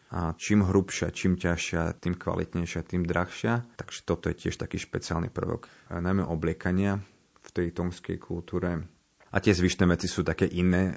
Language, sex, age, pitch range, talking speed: Slovak, male, 30-49, 85-95 Hz, 160 wpm